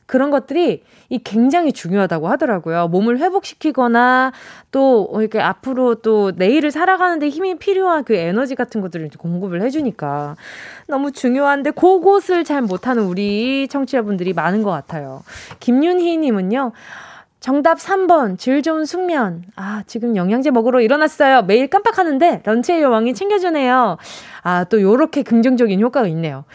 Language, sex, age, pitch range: Korean, female, 20-39, 215-320 Hz